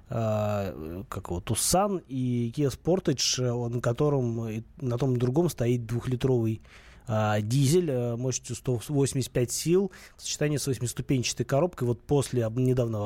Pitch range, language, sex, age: 115-140 Hz, Russian, male, 20-39